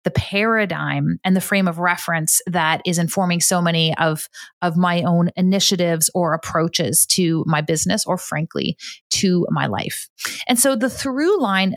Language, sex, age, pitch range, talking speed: English, female, 30-49, 175-210 Hz, 165 wpm